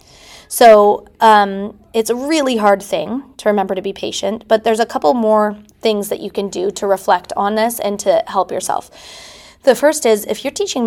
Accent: American